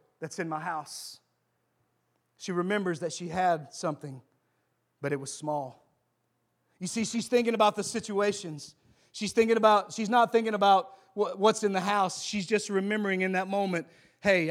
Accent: American